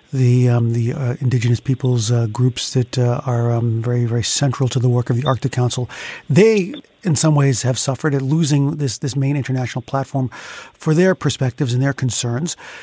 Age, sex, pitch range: 40-59, male, 130-150 Hz